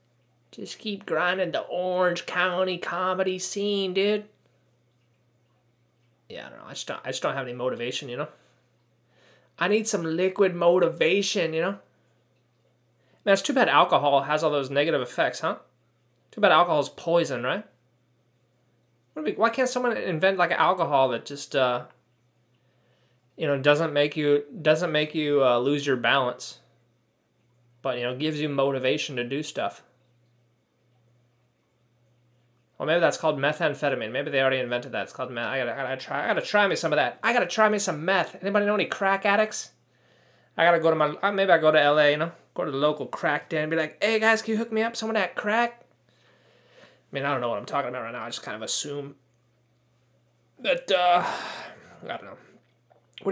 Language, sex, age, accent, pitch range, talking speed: English, male, 20-39, American, 125-195 Hz, 185 wpm